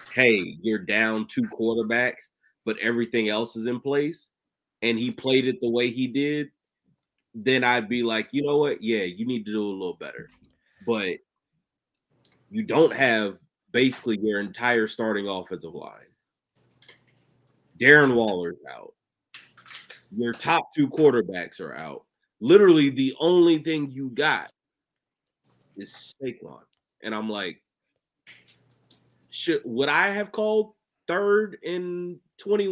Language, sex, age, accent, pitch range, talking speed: English, male, 30-49, American, 115-170 Hz, 130 wpm